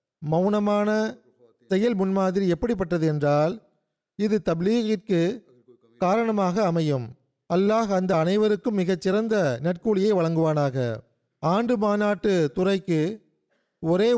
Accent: native